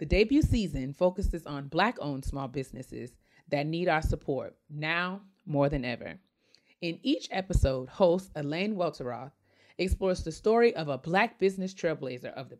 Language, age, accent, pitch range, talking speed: English, 30-49, American, 145-195 Hz, 150 wpm